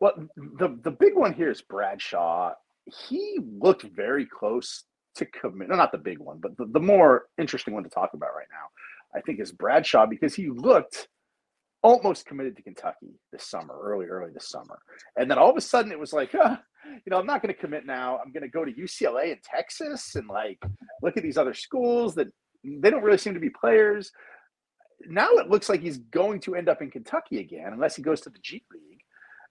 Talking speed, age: 220 wpm, 40-59